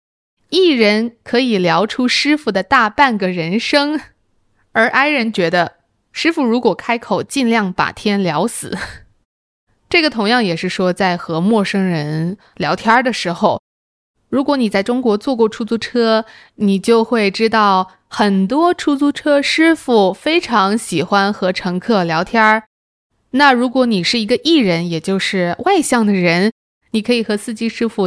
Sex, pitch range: female, 190-245 Hz